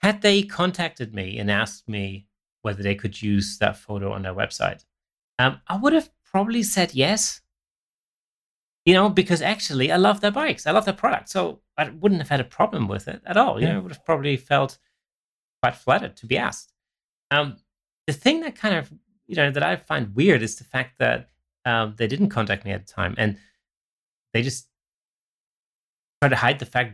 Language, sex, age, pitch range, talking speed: English, male, 30-49, 100-140 Hz, 200 wpm